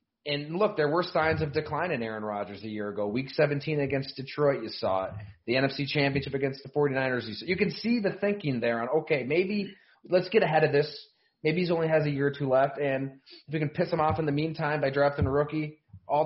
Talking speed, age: 245 wpm, 30-49